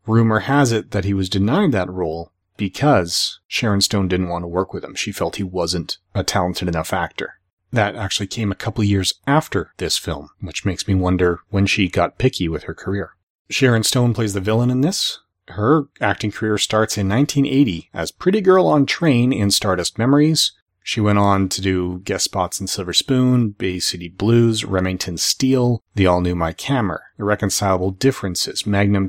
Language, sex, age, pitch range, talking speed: English, male, 30-49, 95-120 Hz, 190 wpm